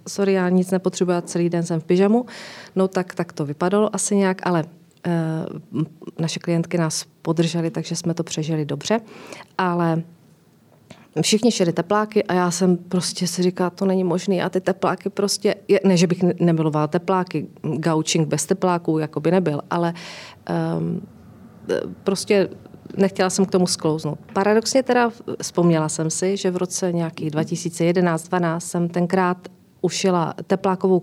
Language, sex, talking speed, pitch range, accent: Czech, female, 150 wpm, 165-190 Hz, native